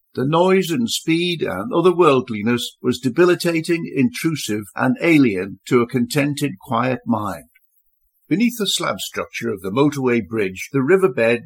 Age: 60-79